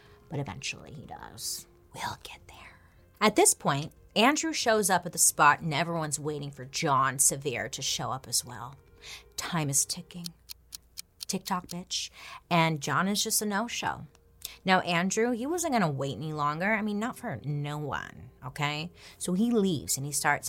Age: 30-49